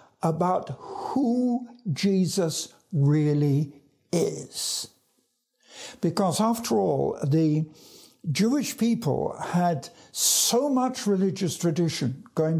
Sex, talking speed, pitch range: male, 80 wpm, 155-225 Hz